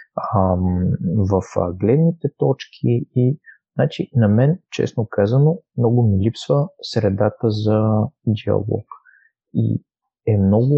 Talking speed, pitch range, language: 100 wpm, 105-135 Hz, Bulgarian